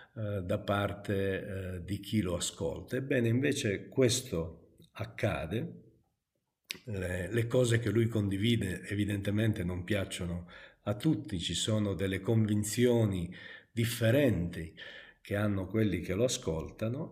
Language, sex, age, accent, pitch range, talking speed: Italian, male, 50-69, native, 100-135 Hz, 110 wpm